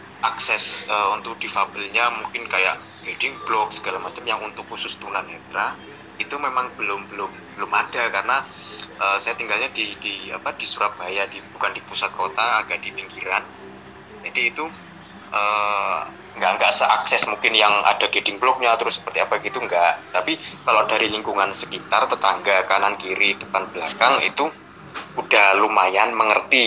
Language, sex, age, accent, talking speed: Indonesian, male, 20-39, native, 150 wpm